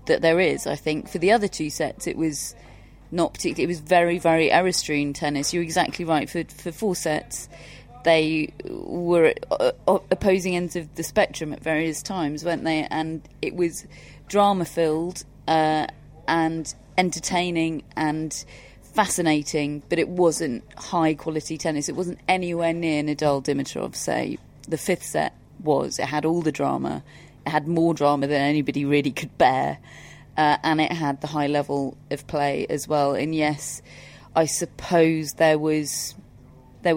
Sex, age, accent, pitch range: female, 30-49, British, 145-175 Hz